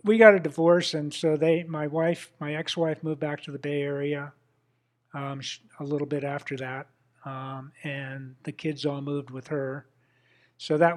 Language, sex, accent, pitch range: English, male, American, 135-150 Hz